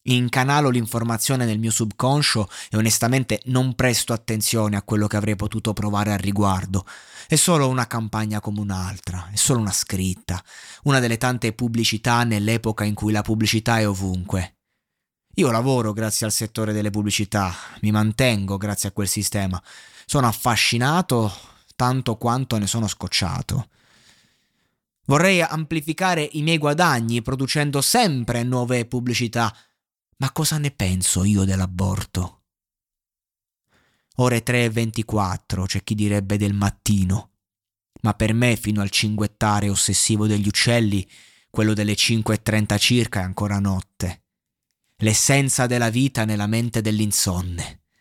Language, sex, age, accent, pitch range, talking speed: Italian, male, 20-39, native, 105-120 Hz, 135 wpm